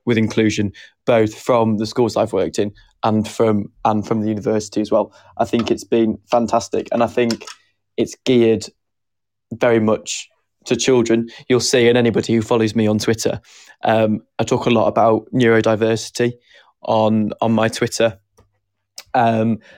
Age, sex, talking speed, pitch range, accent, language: 20-39, male, 160 wpm, 110-120 Hz, British, English